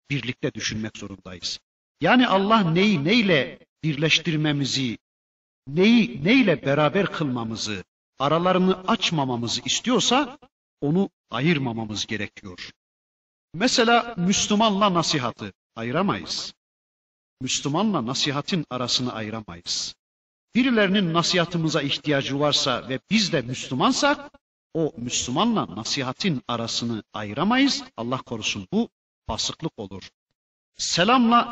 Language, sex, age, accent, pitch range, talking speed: Turkish, male, 50-69, native, 120-195 Hz, 85 wpm